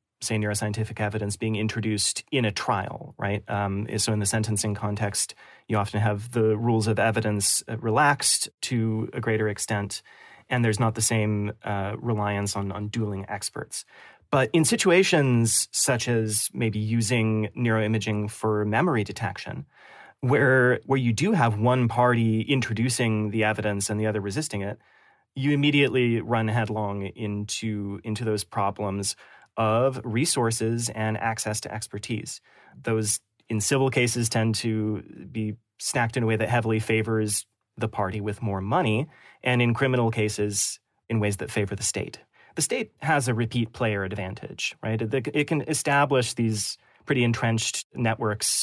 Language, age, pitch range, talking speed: English, 30-49, 105-120 Hz, 150 wpm